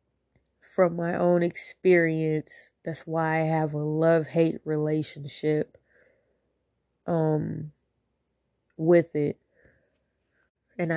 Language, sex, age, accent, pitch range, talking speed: English, female, 20-39, American, 155-170 Hz, 80 wpm